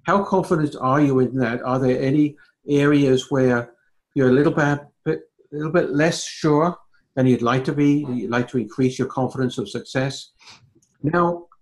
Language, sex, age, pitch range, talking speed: English, male, 60-79, 120-150 Hz, 175 wpm